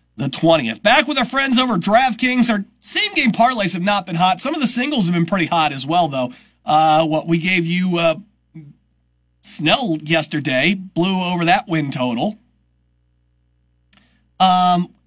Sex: male